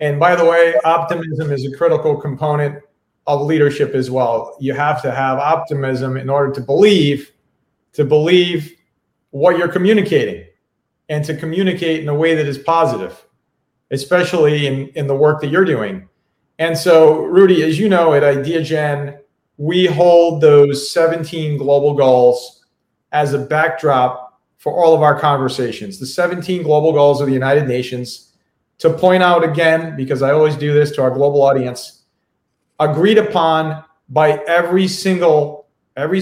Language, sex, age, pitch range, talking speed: English, male, 40-59, 140-170 Hz, 155 wpm